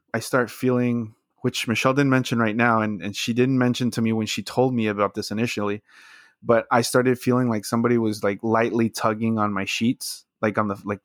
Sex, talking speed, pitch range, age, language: male, 215 wpm, 105-115 Hz, 20-39, English